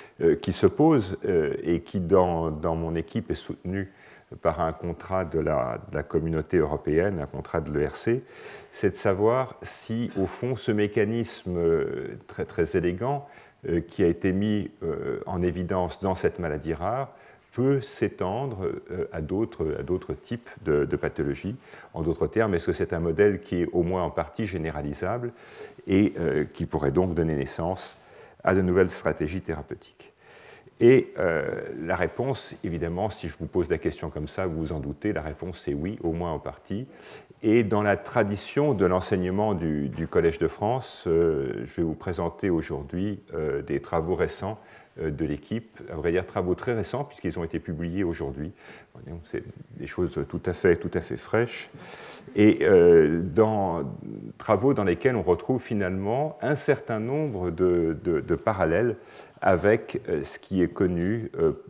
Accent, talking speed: French, 170 wpm